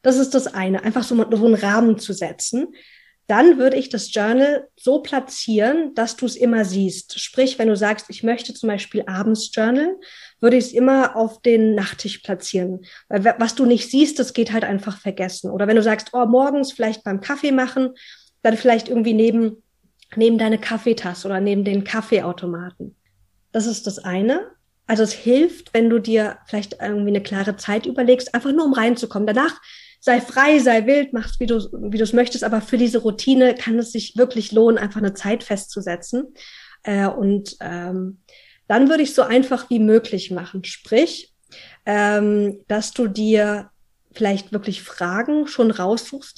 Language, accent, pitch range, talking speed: German, German, 205-250 Hz, 175 wpm